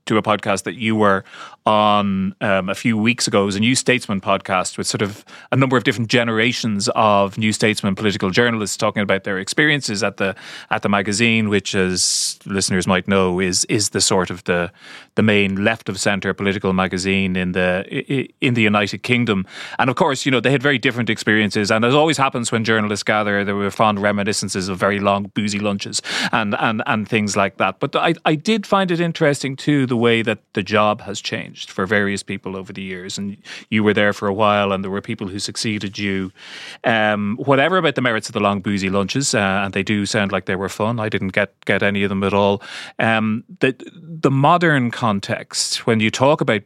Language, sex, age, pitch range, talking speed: English, male, 30-49, 100-120 Hz, 215 wpm